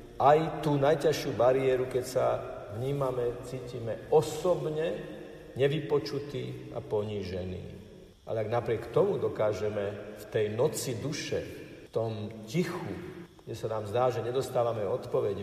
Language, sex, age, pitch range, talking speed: Slovak, male, 50-69, 105-130 Hz, 120 wpm